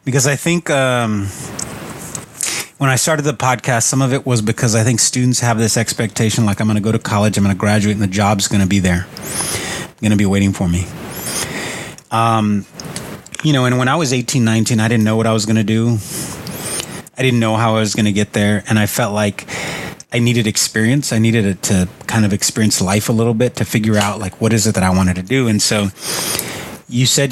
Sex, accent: male, American